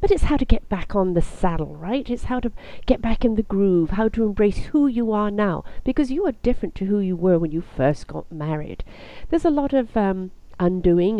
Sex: female